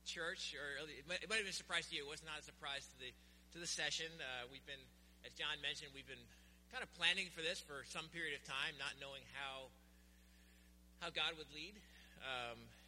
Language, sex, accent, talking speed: English, male, American, 225 wpm